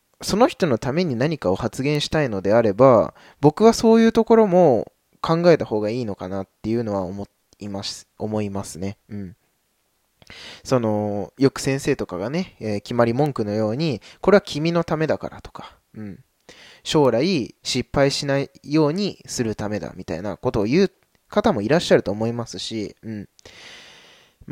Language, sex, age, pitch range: Japanese, male, 20-39, 100-145 Hz